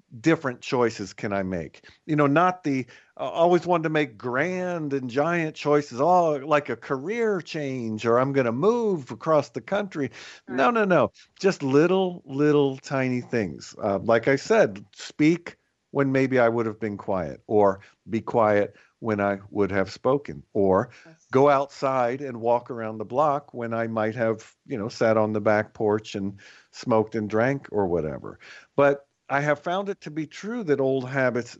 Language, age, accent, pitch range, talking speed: English, 50-69, American, 110-145 Hz, 180 wpm